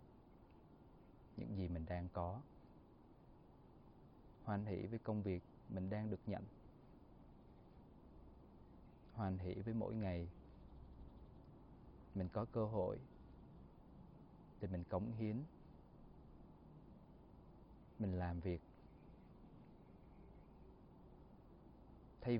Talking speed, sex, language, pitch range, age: 85 wpm, male, Vietnamese, 90-115 Hz, 20-39